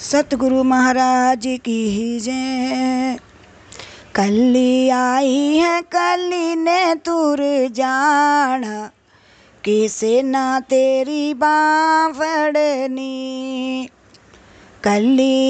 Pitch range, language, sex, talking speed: 255-310 Hz, Hindi, female, 60 wpm